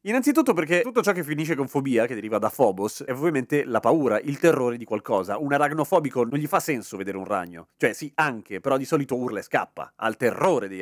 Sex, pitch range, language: male, 130-180 Hz, Italian